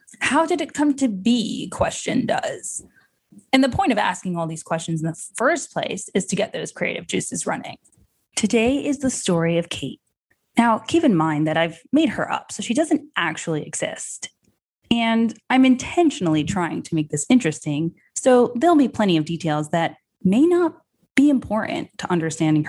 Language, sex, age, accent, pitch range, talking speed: English, female, 20-39, American, 165-240 Hz, 180 wpm